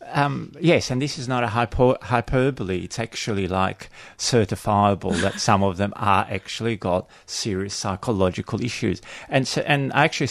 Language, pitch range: English, 95-115 Hz